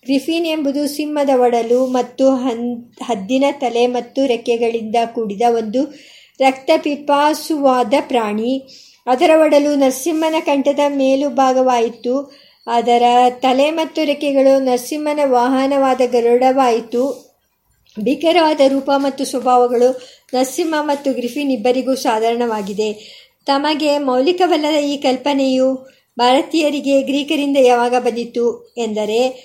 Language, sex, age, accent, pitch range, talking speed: Kannada, male, 50-69, native, 245-285 Hz, 95 wpm